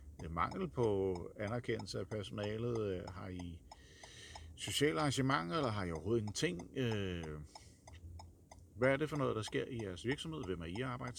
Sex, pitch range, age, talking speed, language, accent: male, 90-120 Hz, 50-69, 155 wpm, Danish, native